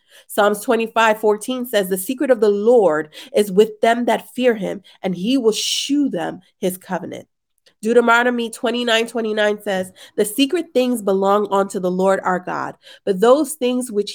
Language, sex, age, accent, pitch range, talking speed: English, female, 30-49, American, 190-245 Hz, 165 wpm